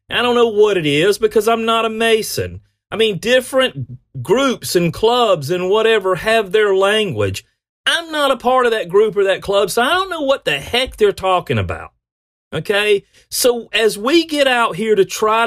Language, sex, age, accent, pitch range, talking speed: English, male, 40-59, American, 150-225 Hz, 200 wpm